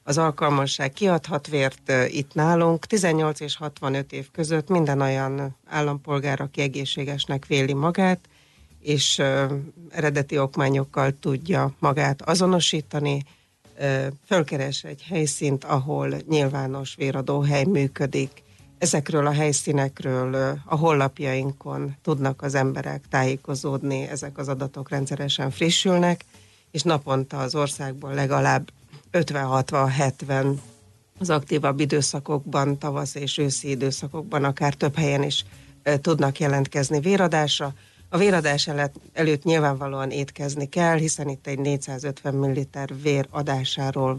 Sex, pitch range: female, 135-150 Hz